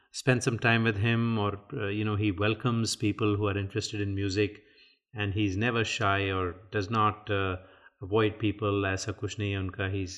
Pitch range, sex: 100-115 Hz, male